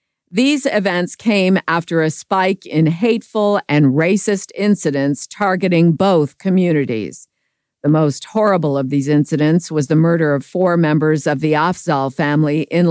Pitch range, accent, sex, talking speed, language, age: 155-195 Hz, American, female, 145 wpm, English, 50-69